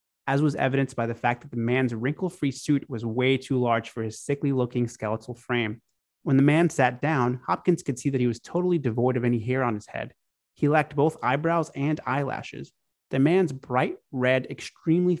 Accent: American